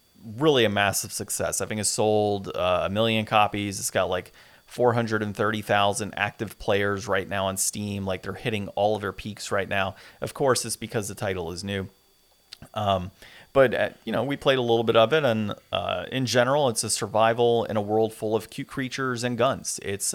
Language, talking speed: English, 205 wpm